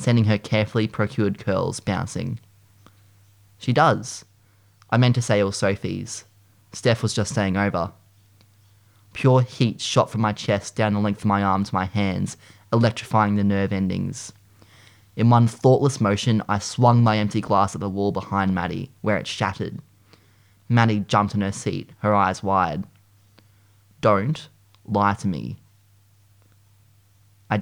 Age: 20-39